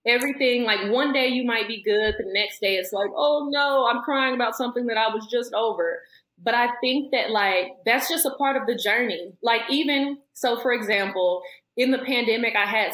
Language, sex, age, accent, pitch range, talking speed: English, female, 20-39, American, 195-245 Hz, 215 wpm